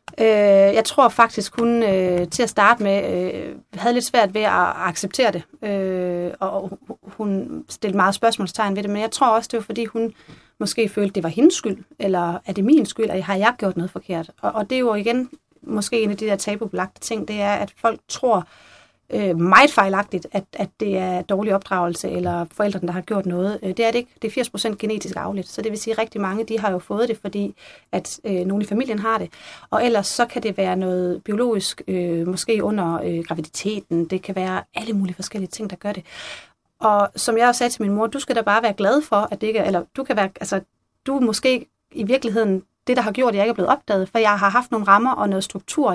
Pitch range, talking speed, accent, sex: 190-230 Hz, 220 wpm, native, female